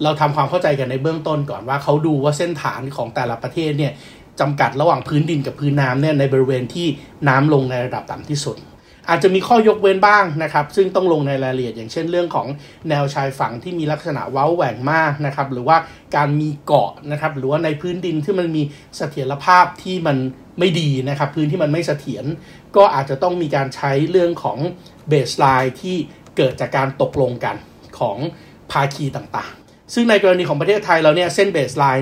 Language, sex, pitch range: Thai, male, 135-170 Hz